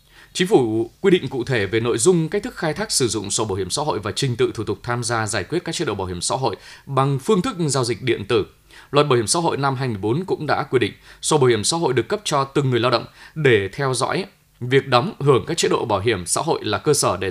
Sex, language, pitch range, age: male, Vietnamese, 115-160 Hz, 20-39